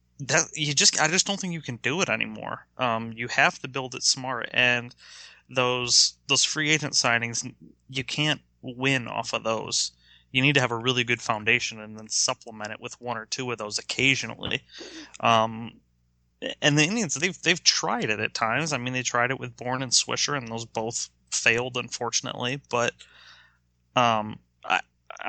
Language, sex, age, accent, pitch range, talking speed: English, male, 20-39, American, 110-135 Hz, 185 wpm